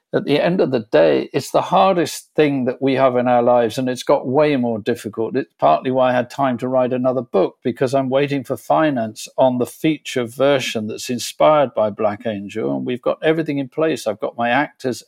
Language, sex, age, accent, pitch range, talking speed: English, male, 50-69, British, 125-155 Hz, 225 wpm